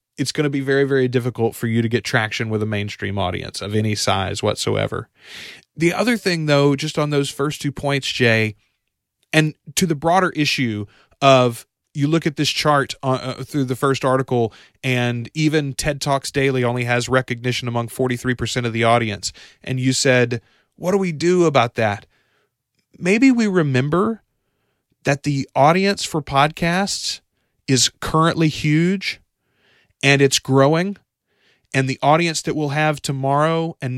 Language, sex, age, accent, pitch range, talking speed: English, male, 30-49, American, 120-155 Hz, 160 wpm